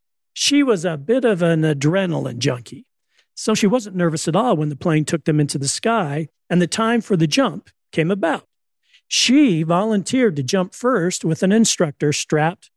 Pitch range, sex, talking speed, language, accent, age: 150-225 Hz, male, 185 wpm, English, American, 50-69